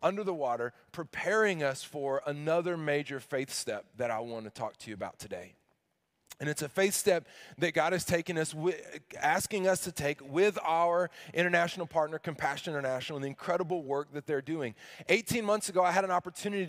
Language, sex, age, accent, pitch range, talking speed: English, male, 20-39, American, 145-180 Hz, 190 wpm